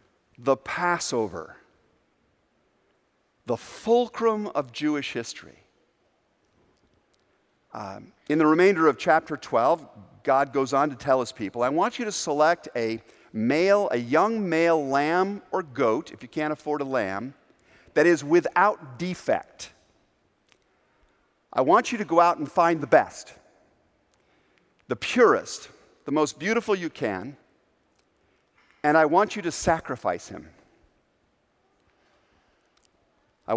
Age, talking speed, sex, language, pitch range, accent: 50-69, 120 wpm, male, English, 140-195 Hz, American